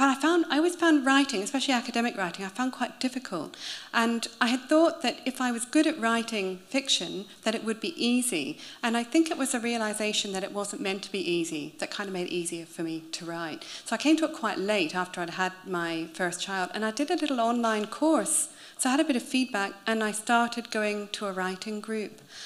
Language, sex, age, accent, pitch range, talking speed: English, female, 40-59, British, 180-245 Hz, 240 wpm